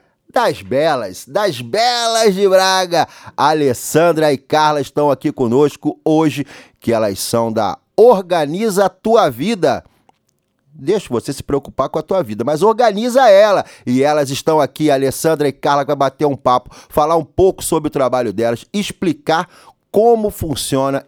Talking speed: 150 wpm